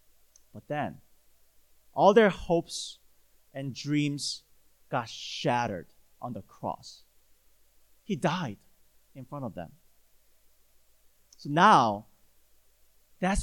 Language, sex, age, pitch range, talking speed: English, male, 40-59, 115-150 Hz, 95 wpm